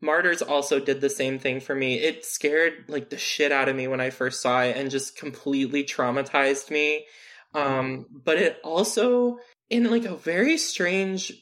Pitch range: 140-175 Hz